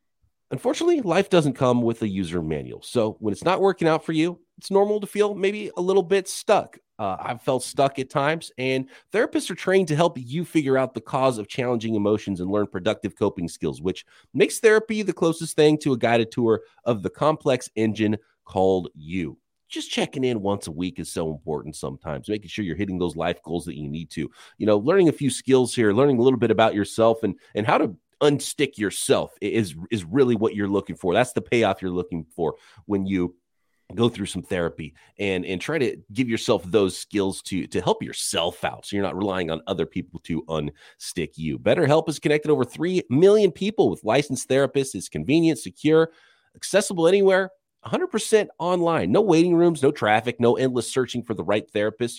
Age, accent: 30-49, American